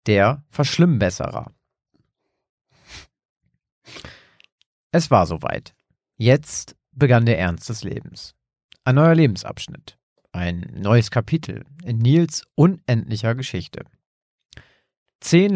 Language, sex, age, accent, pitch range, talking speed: German, male, 40-59, German, 105-135 Hz, 85 wpm